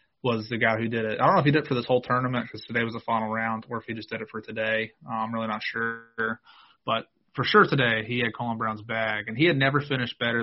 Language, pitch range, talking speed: English, 115-135 Hz, 290 wpm